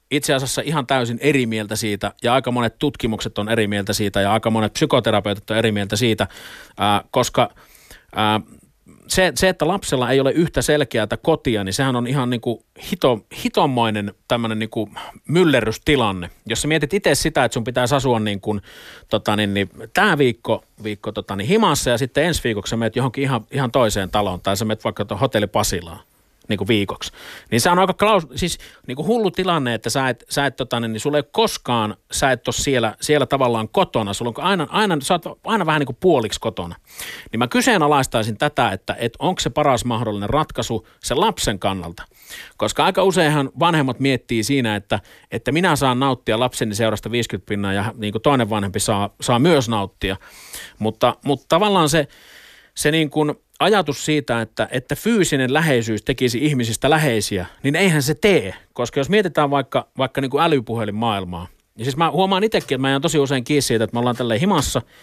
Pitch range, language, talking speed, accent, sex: 110-150 Hz, Finnish, 180 wpm, native, male